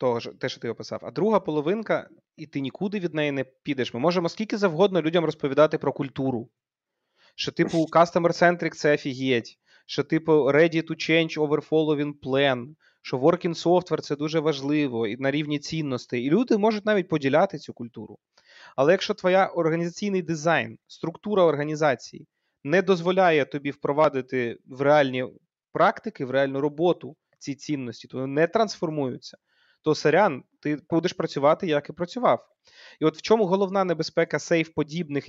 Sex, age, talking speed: male, 20-39, 155 wpm